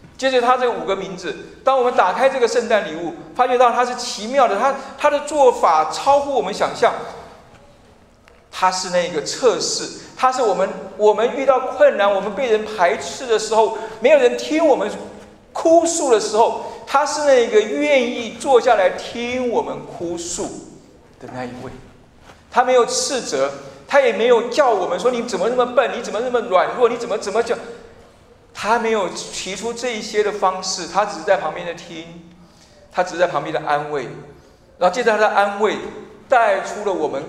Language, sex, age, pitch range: Chinese, male, 50-69, 185-270 Hz